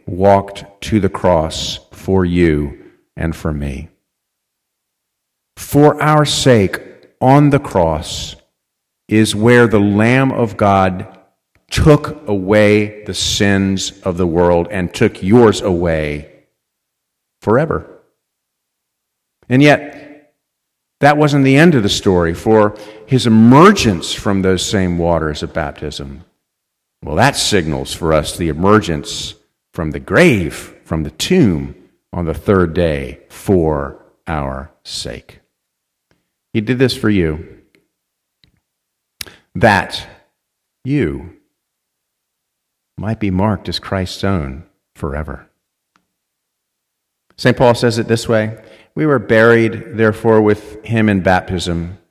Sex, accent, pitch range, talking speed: male, American, 85-120 Hz, 115 wpm